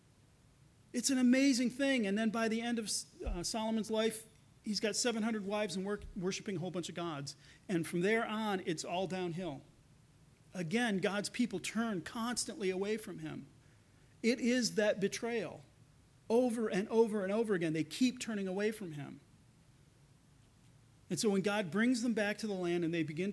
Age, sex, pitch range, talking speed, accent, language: 40-59, male, 145-225 Hz, 175 wpm, American, English